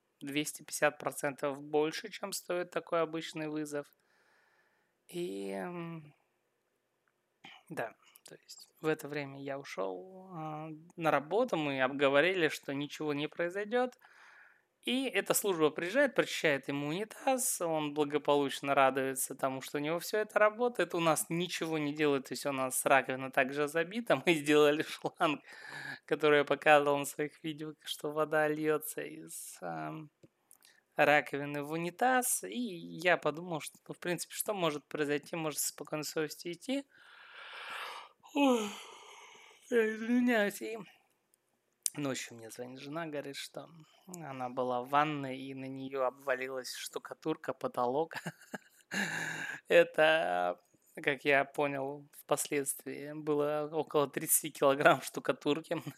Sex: male